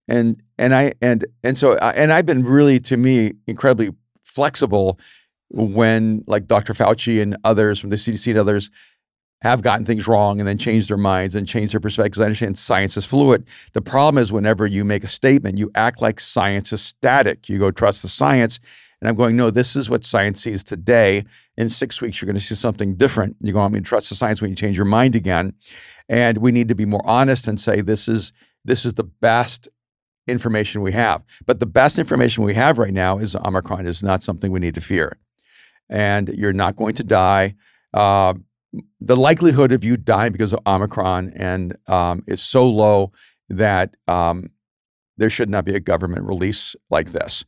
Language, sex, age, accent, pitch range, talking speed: English, male, 50-69, American, 100-120 Hz, 200 wpm